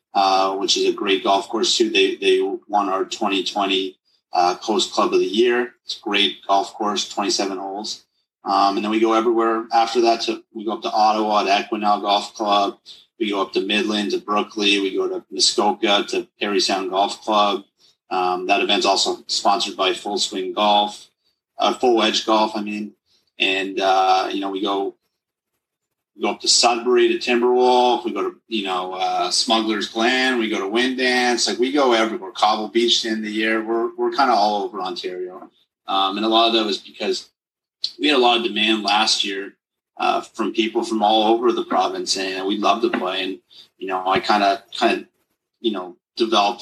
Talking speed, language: 200 wpm, English